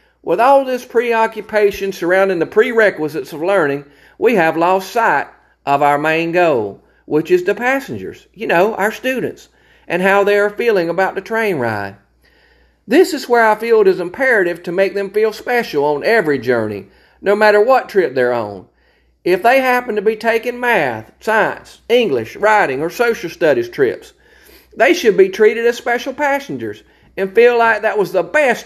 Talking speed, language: 175 wpm, English